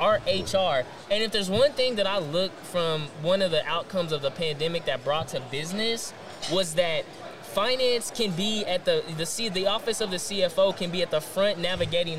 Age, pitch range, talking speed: 20-39, 160-205 Hz, 205 wpm